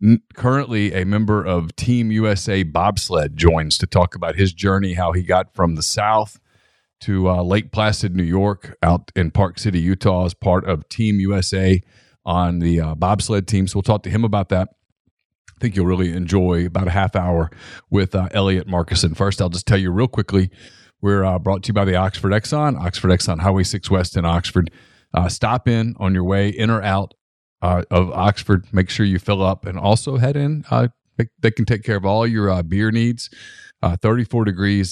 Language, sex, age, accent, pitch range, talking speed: English, male, 40-59, American, 90-105 Hz, 205 wpm